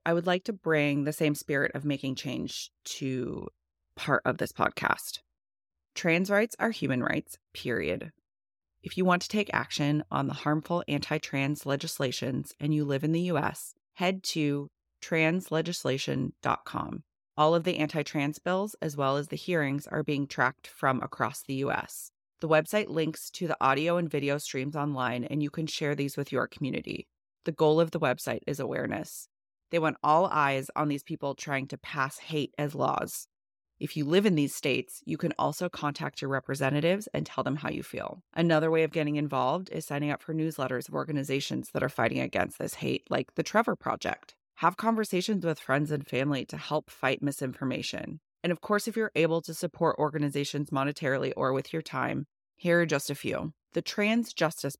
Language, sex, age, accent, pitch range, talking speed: English, female, 30-49, American, 140-165 Hz, 185 wpm